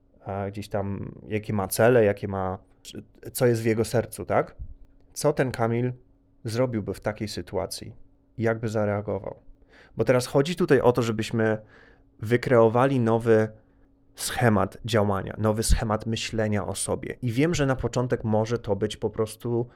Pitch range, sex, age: 100-115 Hz, male, 30-49